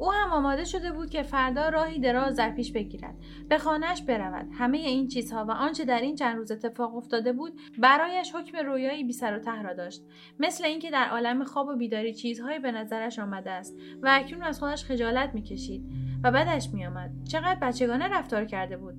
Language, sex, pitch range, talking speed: Persian, female, 220-280 Hz, 195 wpm